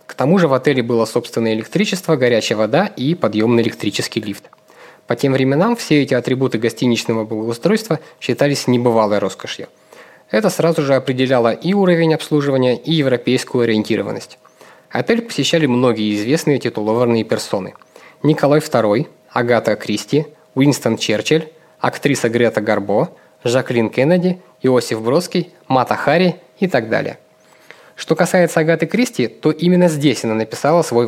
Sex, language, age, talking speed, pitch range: male, Russian, 20-39, 135 wpm, 115-160 Hz